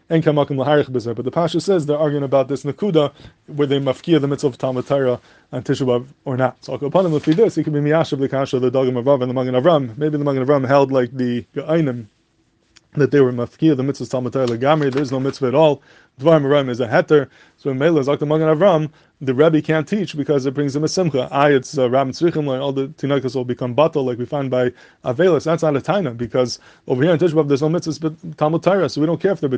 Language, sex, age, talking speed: English, male, 20-39, 250 wpm